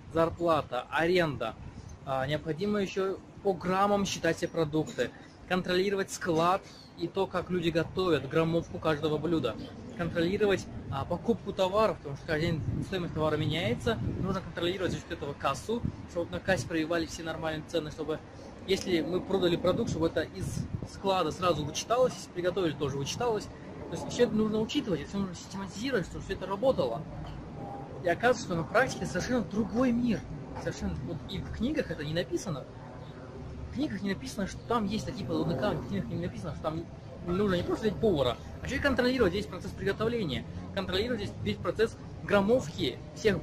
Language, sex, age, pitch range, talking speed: Russian, male, 20-39, 150-195 Hz, 165 wpm